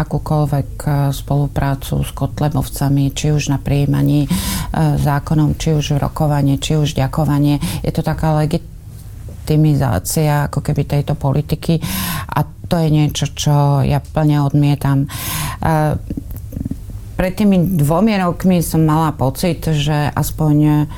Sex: female